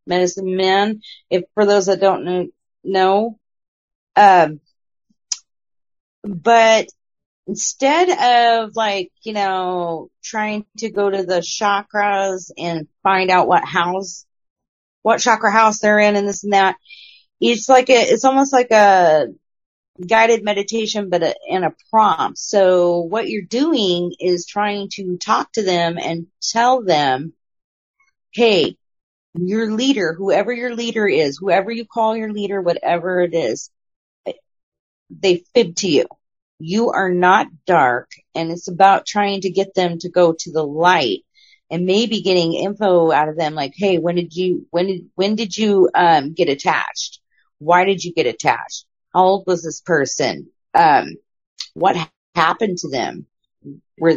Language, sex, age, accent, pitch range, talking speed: English, female, 40-59, American, 175-220 Hz, 150 wpm